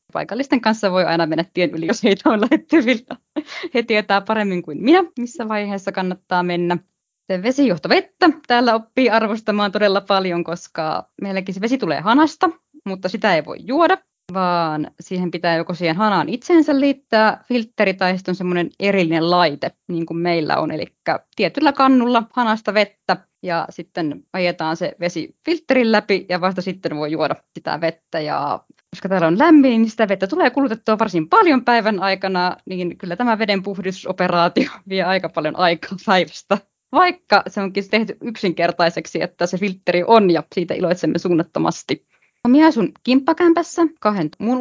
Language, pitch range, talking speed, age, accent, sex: Finnish, 175-240 Hz, 155 wpm, 20-39, native, female